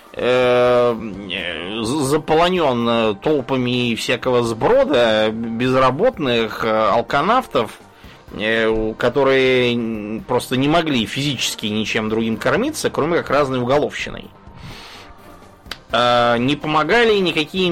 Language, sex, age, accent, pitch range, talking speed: Russian, male, 20-39, native, 110-140 Hz, 70 wpm